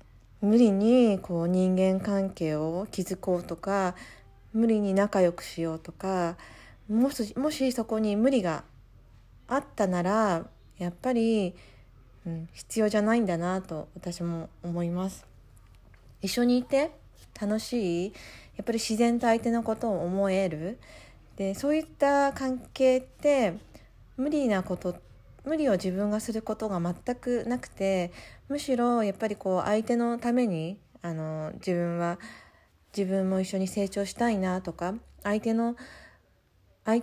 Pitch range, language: 175-235 Hz, Japanese